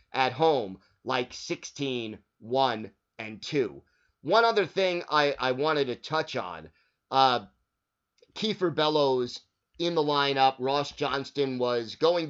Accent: American